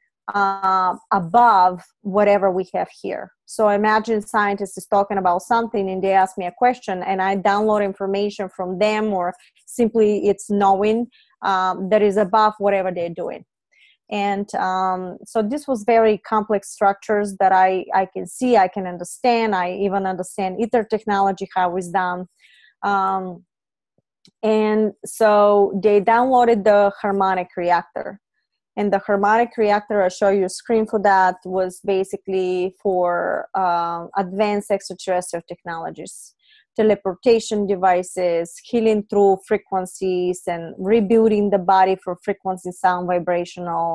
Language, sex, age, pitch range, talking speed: English, female, 20-39, 185-215 Hz, 135 wpm